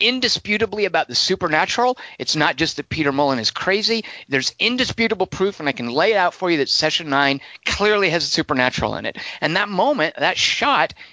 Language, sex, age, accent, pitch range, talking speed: English, male, 50-69, American, 140-190 Hz, 200 wpm